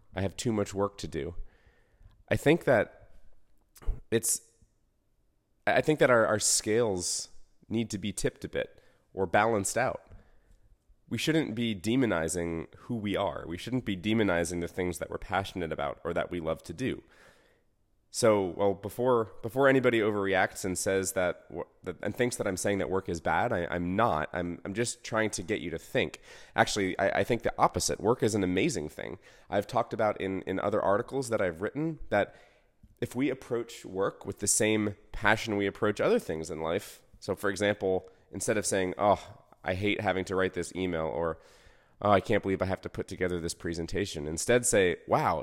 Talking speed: 190 wpm